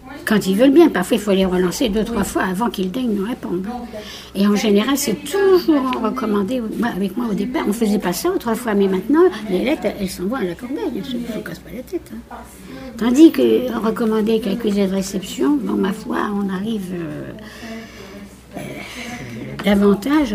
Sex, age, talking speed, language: female, 60-79, 200 wpm, French